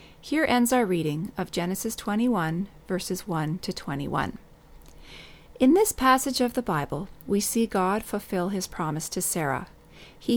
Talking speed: 150 wpm